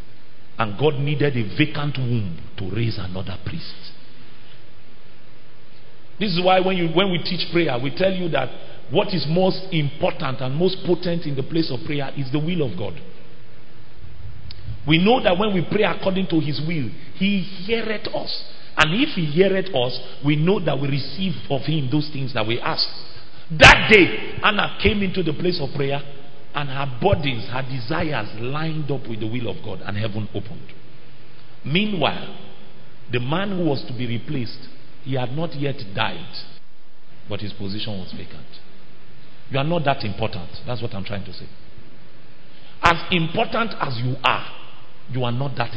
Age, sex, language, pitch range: 50-69, male, English, 120-170 Hz